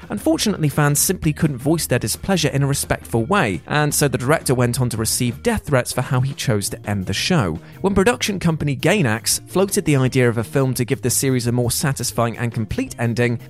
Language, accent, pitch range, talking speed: English, British, 115-165 Hz, 220 wpm